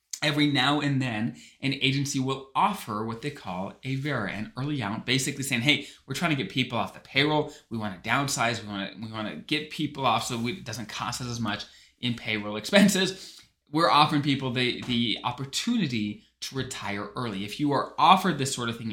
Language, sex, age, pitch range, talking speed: English, male, 20-39, 115-150 Hz, 195 wpm